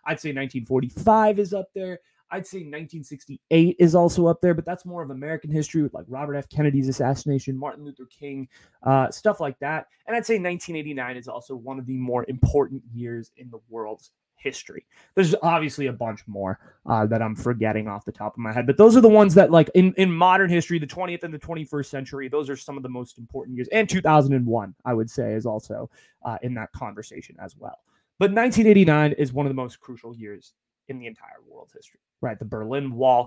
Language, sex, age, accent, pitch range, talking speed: English, male, 20-39, American, 120-160 Hz, 215 wpm